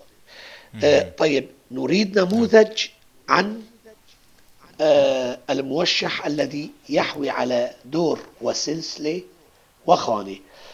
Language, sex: Arabic, male